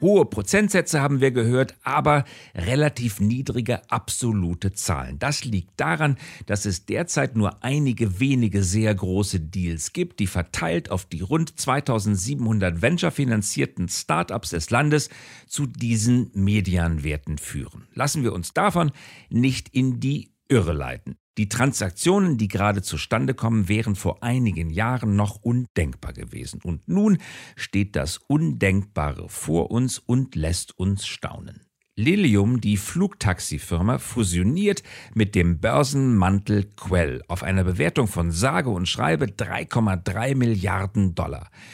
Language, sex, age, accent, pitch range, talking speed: English, male, 50-69, German, 95-130 Hz, 125 wpm